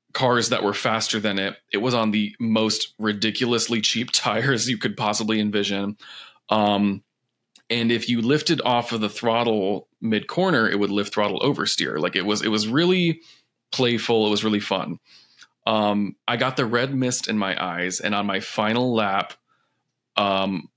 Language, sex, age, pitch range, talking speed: English, male, 20-39, 100-120 Hz, 175 wpm